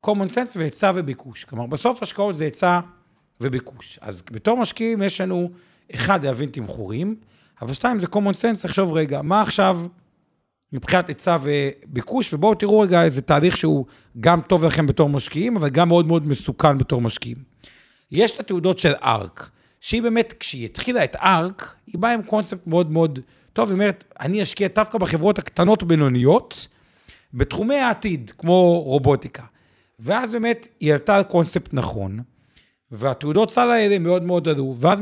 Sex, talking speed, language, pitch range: male, 160 wpm, Hebrew, 135-195 Hz